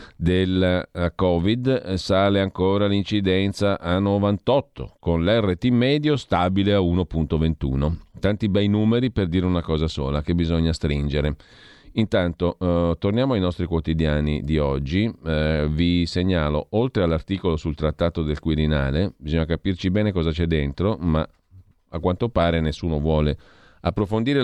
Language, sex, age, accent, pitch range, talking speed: Italian, male, 40-59, native, 80-100 Hz, 135 wpm